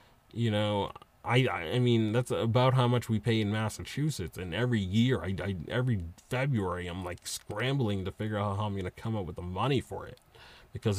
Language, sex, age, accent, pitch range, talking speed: English, male, 30-49, American, 100-125 Hz, 210 wpm